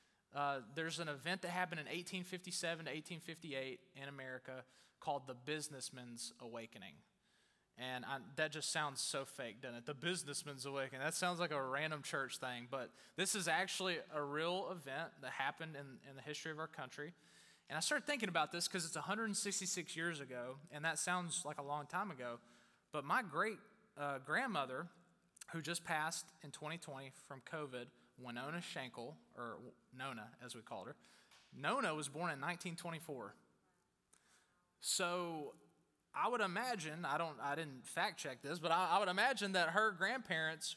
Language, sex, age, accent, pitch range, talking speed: English, male, 20-39, American, 140-180 Hz, 165 wpm